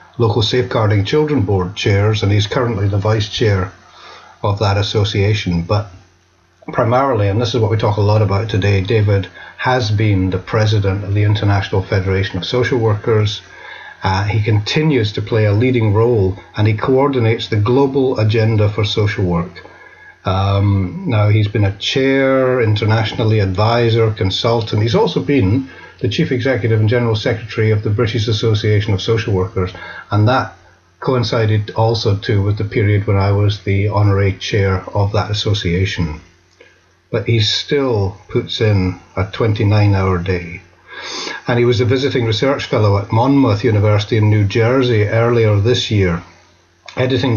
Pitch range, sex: 100-120 Hz, male